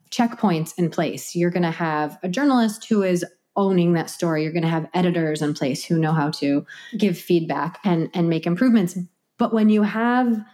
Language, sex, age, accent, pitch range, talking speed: English, female, 30-49, American, 165-205 Hz, 200 wpm